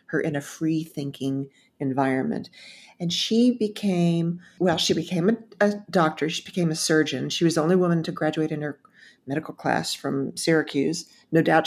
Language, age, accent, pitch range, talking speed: English, 50-69, American, 155-185 Hz, 175 wpm